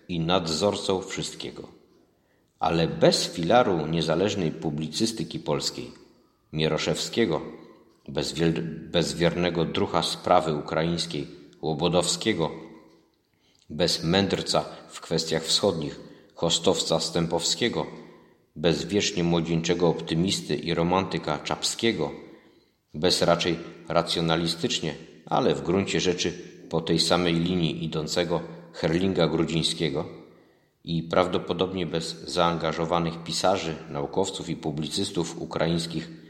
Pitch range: 80-90 Hz